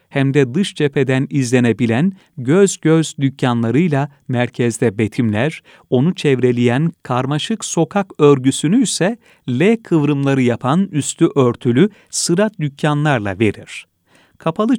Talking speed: 100 wpm